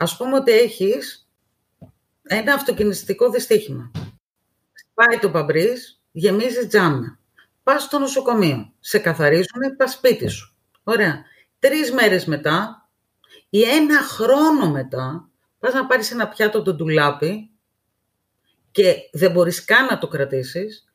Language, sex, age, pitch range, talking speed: Greek, female, 40-59, 175-270 Hz, 125 wpm